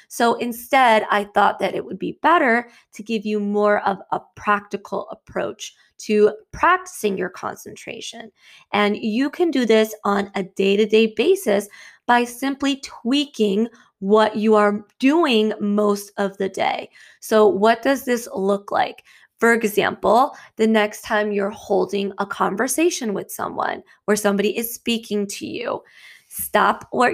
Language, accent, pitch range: English, American, 205-235 Hz